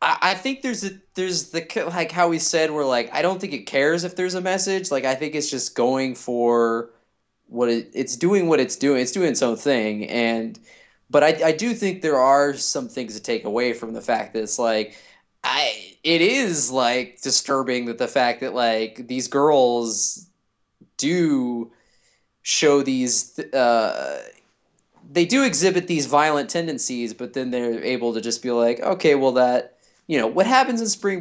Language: English